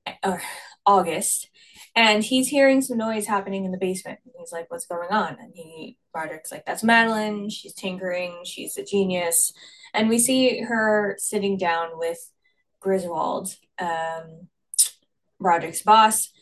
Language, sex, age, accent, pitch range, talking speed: English, female, 10-29, American, 170-215 Hz, 135 wpm